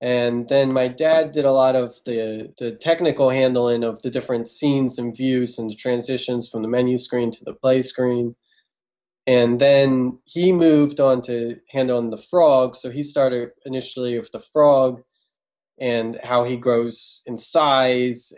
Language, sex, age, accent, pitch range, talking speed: English, male, 20-39, American, 120-145 Hz, 170 wpm